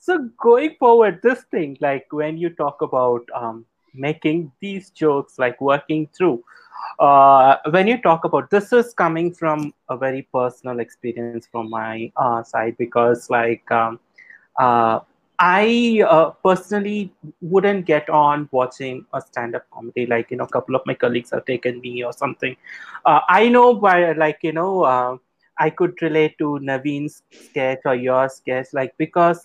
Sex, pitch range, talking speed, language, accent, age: male, 135-180 Hz, 165 wpm, Tamil, native, 30-49